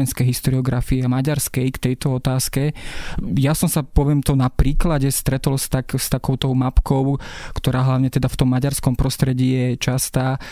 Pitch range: 130-145 Hz